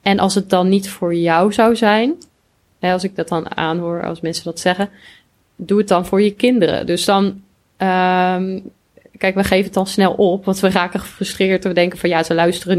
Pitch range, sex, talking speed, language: 170-200 Hz, female, 205 wpm, Dutch